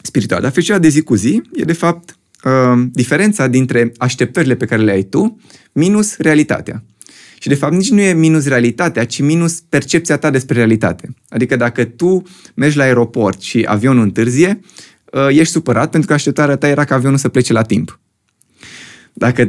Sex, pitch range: male, 120-155 Hz